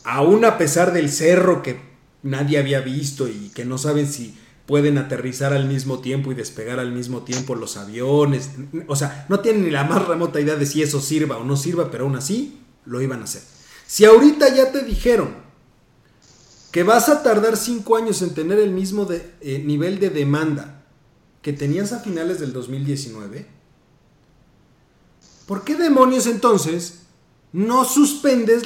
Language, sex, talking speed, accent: Spanish, male, 170 wpm, Mexican